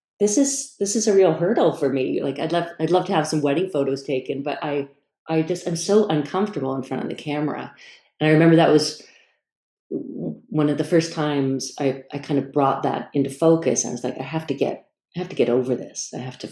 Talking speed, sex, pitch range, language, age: 240 wpm, female, 125-150 Hz, English, 30-49